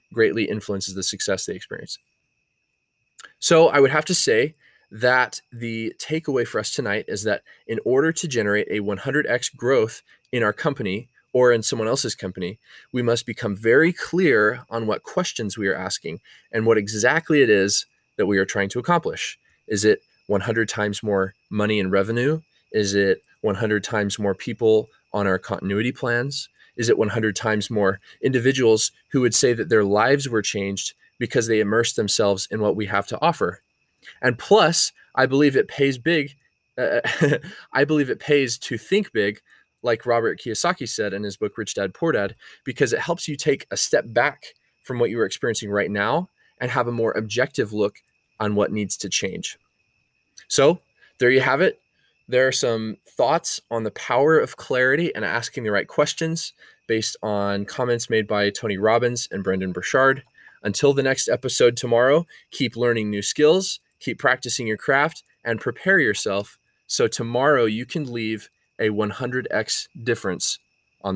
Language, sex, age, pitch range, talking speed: English, male, 20-39, 105-135 Hz, 175 wpm